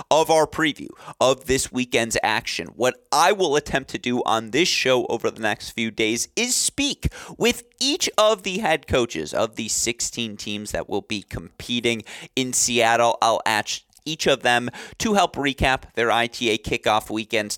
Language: English